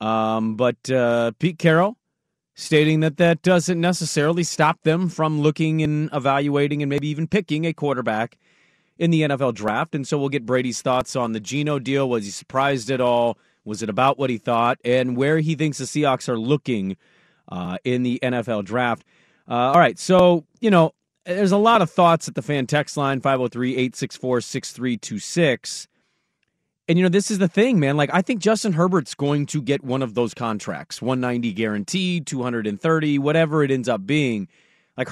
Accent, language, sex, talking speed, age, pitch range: American, English, male, 180 wpm, 30-49, 125-170 Hz